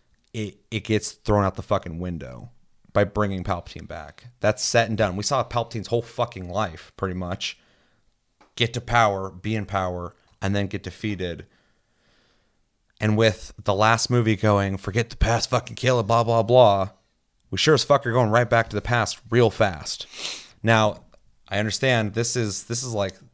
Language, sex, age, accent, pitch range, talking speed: English, male, 30-49, American, 90-110 Hz, 180 wpm